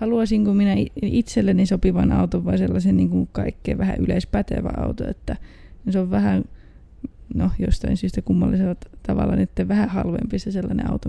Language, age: Finnish, 20-39